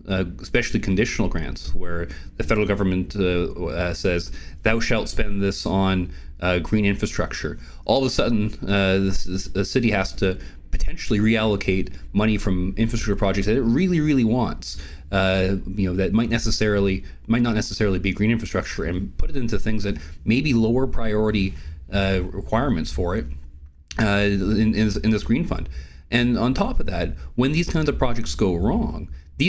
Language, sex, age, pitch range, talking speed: English, male, 30-49, 90-110 Hz, 175 wpm